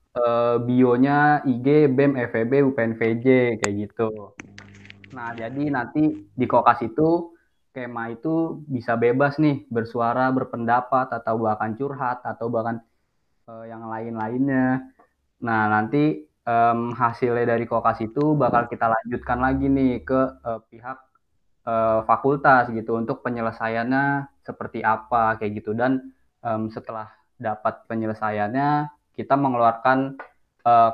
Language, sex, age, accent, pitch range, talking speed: Indonesian, male, 20-39, native, 115-130 Hz, 115 wpm